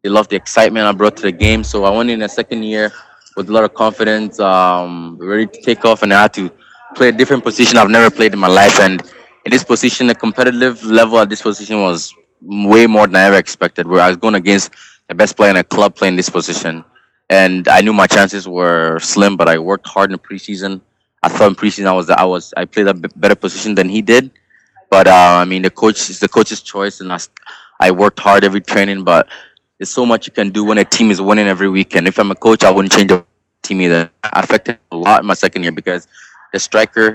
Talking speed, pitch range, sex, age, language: 250 wpm, 95-110 Hz, male, 20-39, English